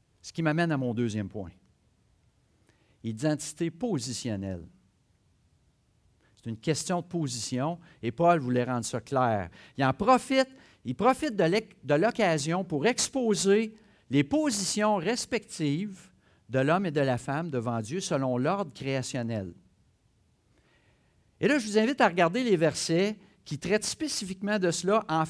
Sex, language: male, French